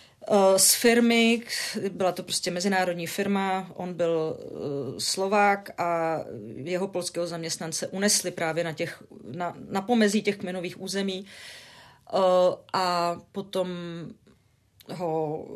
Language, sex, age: Czech, female, 40-59